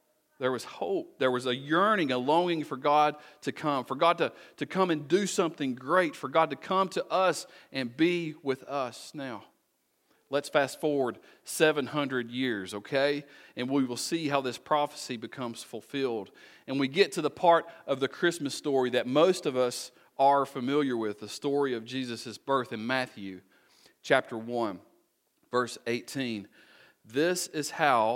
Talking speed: 170 wpm